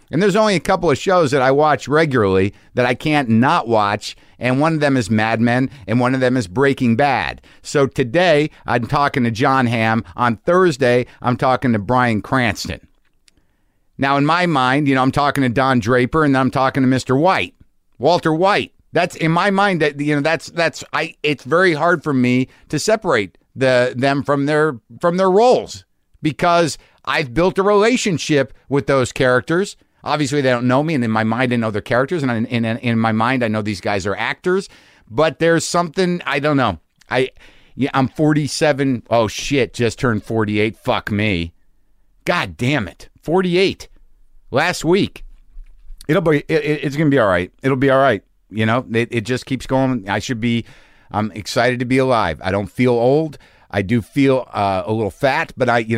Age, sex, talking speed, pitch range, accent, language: 50-69, male, 200 wpm, 115-150 Hz, American, English